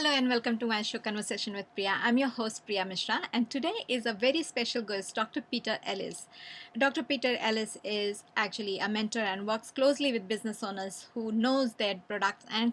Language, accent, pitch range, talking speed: English, Indian, 215-255 Hz, 200 wpm